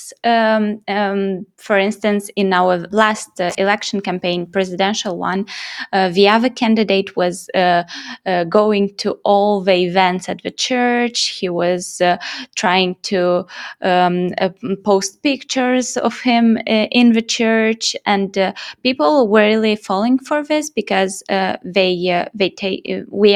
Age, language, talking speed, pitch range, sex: 20-39, English, 140 wpm, 180-225 Hz, female